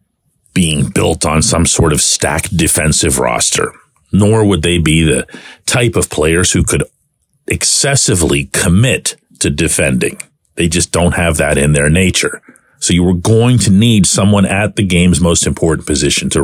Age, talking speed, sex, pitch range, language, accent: 50-69, 165 wpm, male, 90-145 Hz, English, American